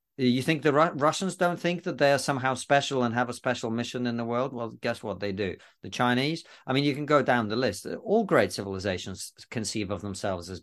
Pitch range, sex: 105-140 Hz, male